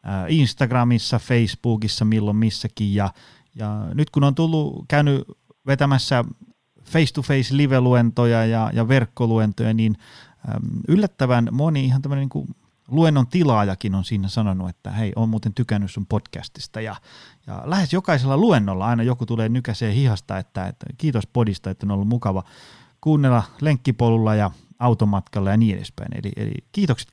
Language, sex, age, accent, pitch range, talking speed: Finnish, male, 30-49, native, 105-135 Hz, 145 wpm